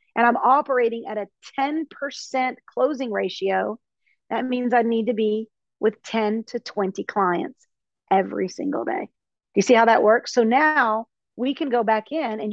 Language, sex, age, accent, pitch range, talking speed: English, female, 40-59, American, 210-255 Hz, 175 wpm